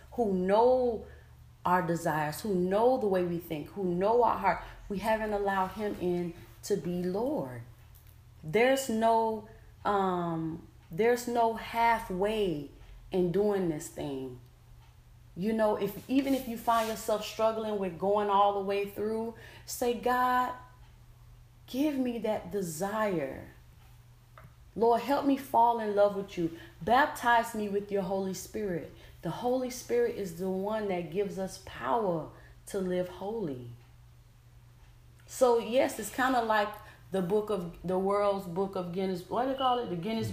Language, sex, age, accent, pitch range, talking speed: English, female, 30-49, American, 170-215 Hz, 150 wpm